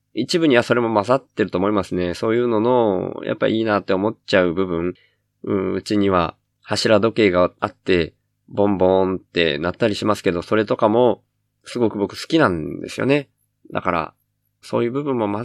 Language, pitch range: Japanese, 95-115 Hz